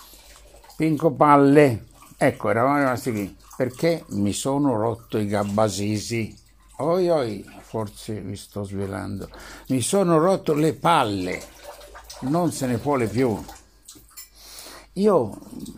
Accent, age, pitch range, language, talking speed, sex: native, 60-79, 105-145 Hz, Italian, 110 wpm, male